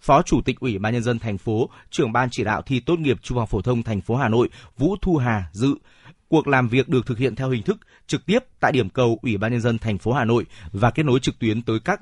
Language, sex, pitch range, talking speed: Vietnamese, male, 115-140 Hz, 285 wpm